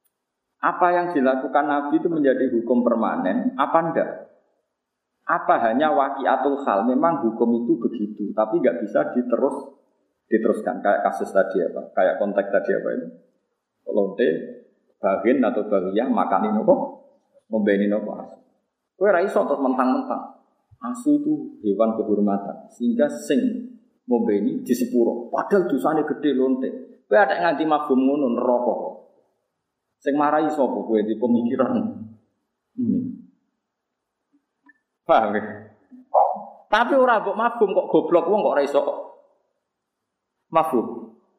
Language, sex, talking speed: Indonesian, male, 115 wpm